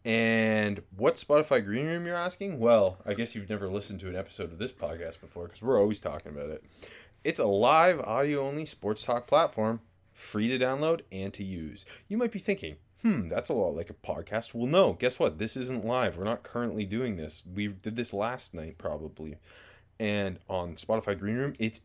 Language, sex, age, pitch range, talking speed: English, male, 20-39, 100-130 Hz, 200 wpm